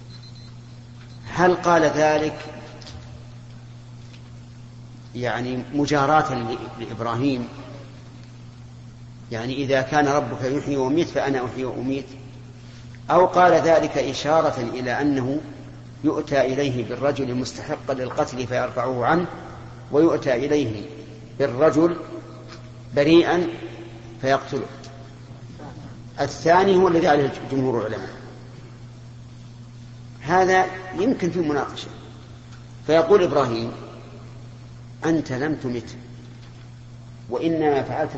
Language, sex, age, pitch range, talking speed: Arabic, male, 50-69, 120-145 Hz, 80 wpm